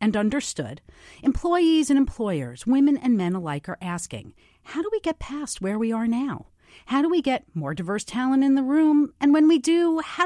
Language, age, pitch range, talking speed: English, 40-59, 185-295 Hz, 205 wpm